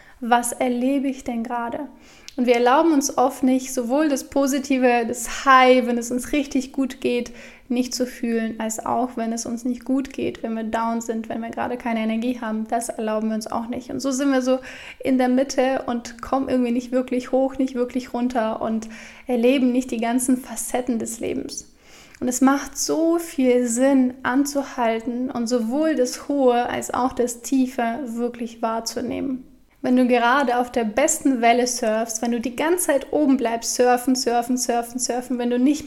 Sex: female